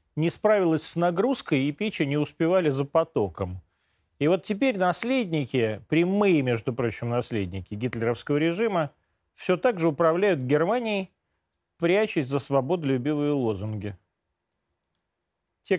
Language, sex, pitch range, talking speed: Russian, male, 115-180 Hz, 115 wpm